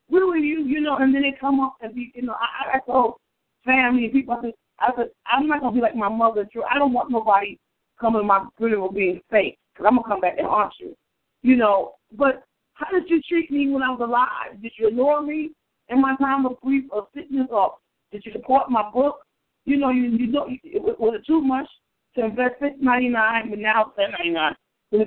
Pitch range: 215-270 Hz